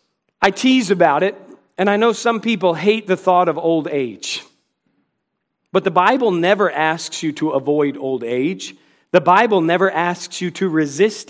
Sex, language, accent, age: male, English, American, 40-59